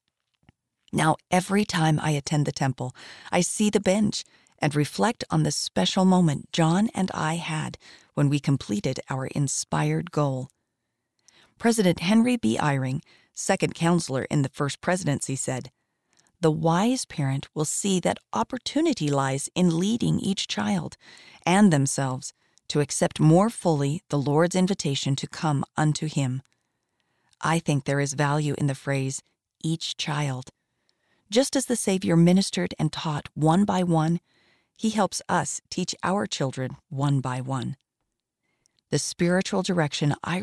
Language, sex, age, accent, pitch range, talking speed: English, female, 40-59, American, 140-185 Hz, 140 wpm